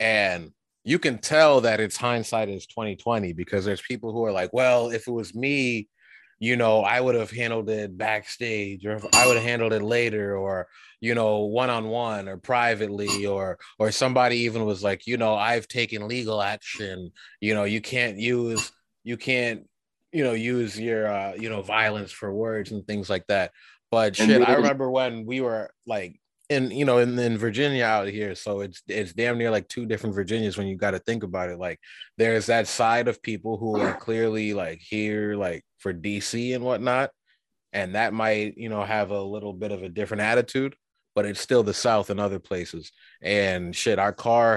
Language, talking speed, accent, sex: English, 200 wpm, American, male